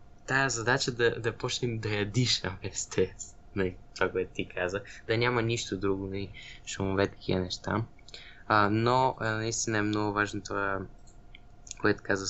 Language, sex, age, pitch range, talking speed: Bulgarian, male, 20-39, 95-115 Hz, 150 wpm